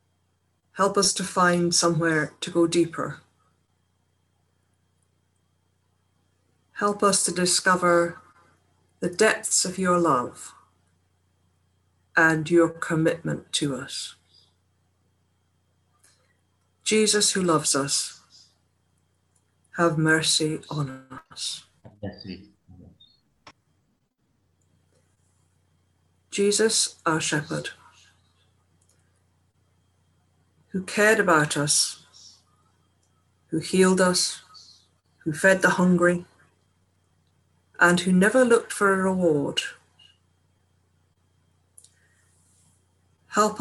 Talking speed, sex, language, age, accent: 70 wpm, female, English, 60-79, British